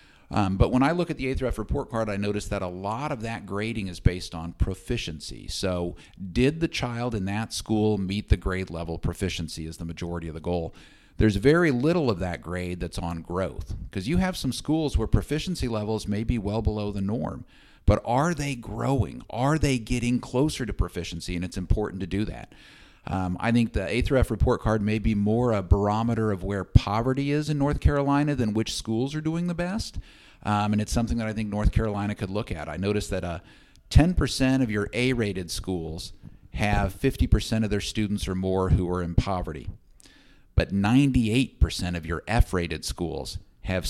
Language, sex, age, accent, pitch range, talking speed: English, male, 50-69, American, 90-120 Hz, 200 wpm